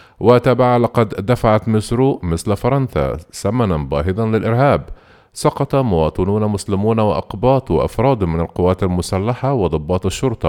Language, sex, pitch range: Arabic, male, 85-115 Hz